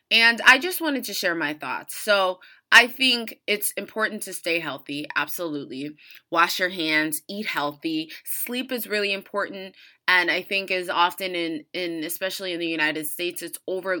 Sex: female